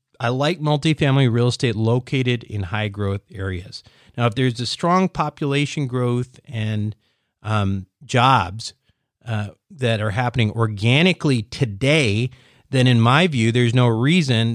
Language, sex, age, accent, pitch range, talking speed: English, male, 40-59, American, 110-140 Hz, 130 wpm